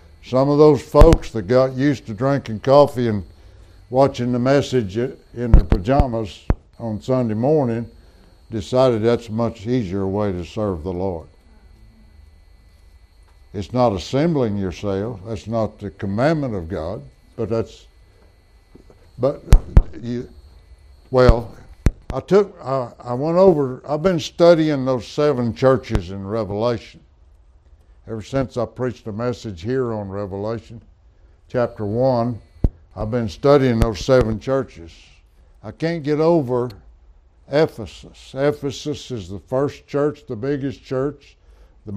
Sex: male